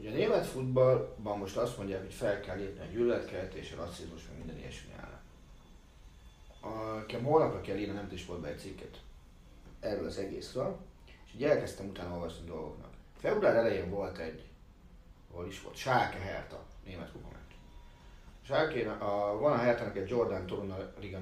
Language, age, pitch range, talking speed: Hungarian, 30-49, 75-105 Hz, 160 wpm